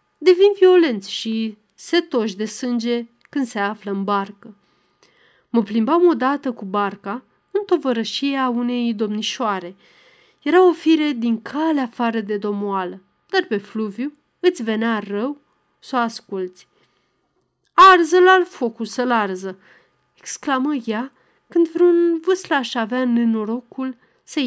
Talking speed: 125 wpm